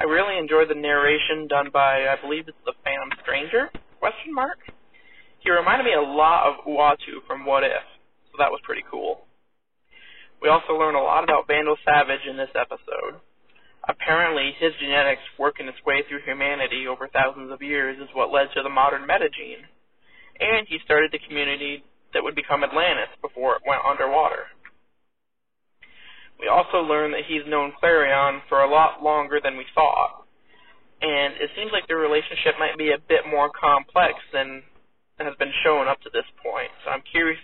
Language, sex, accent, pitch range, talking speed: English, male, American, 140-160 Hz, 180 wpm